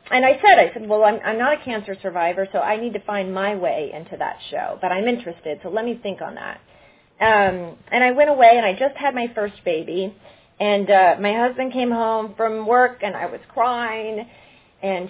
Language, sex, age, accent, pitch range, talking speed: English, female, 30-49, American, 190-250 Hz, 225 wpm